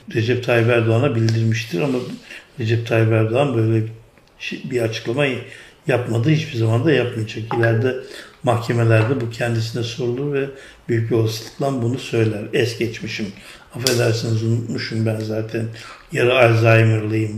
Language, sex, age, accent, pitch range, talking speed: Turkish, male, 60-79, native, 115-125 Hz, 120 wpm